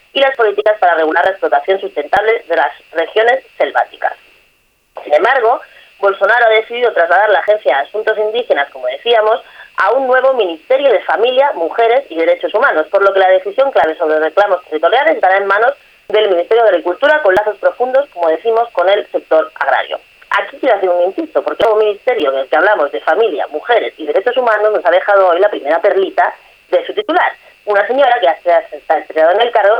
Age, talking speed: 20-39, 195 wpm